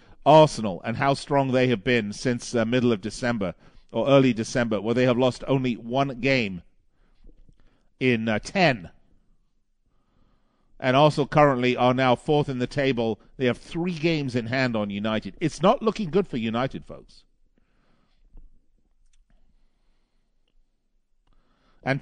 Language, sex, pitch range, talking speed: English, male, 115-155 Hz, 140 wpm